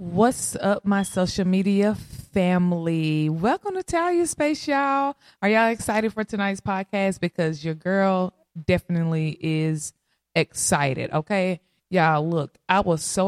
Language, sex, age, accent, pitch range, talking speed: English, female, 20-39, American, 155-200 Hz, 130 wpm